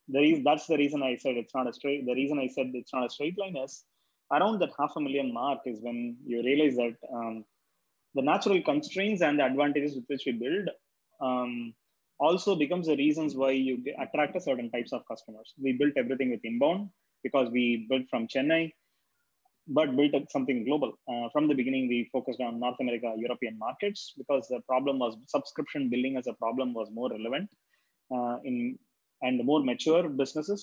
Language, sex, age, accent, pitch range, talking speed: English, male, 20-39, Indian, 125-160 Hz, 200 wpm